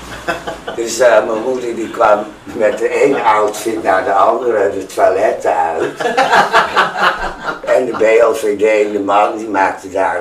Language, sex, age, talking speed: Dutch, male, 60-79, 140 wpm